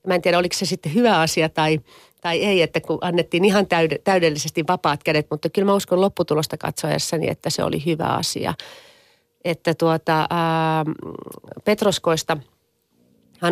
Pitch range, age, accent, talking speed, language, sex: 155-185 Hz, 30-49, native, 140 wpm, Finnish, female